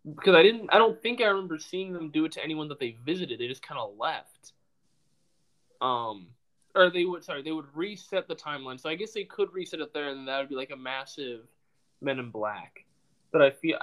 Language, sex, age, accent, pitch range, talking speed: English, male, 20-39, American, 130-175 Hz, 230 wpm